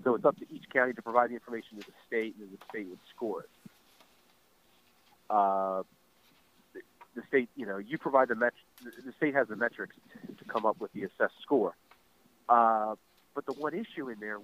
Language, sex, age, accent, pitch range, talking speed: English, male, 40-59, American, 105-145 Hz, 215 wpm